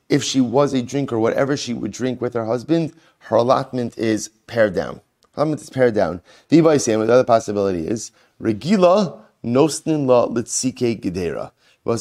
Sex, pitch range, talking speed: male, 110-135 Hz, 140 wpm